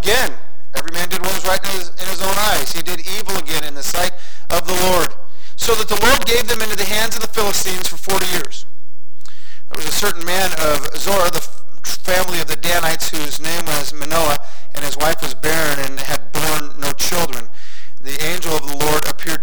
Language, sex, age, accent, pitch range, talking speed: English, male, 40-59, American, 145-170 Hz, 210 wpm